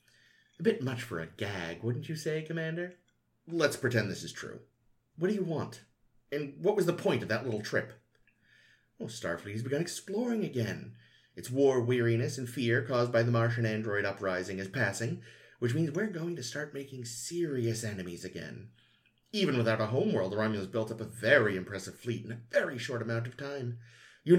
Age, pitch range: 30-49, 105-140 Hz